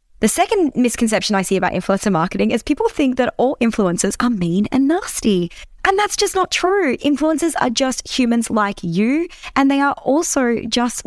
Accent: Australian